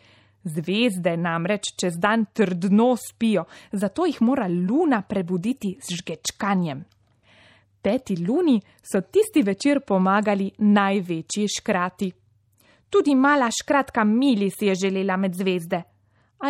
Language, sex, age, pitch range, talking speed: Italian, female, 20-39, 175-230 Hz, 115 wpm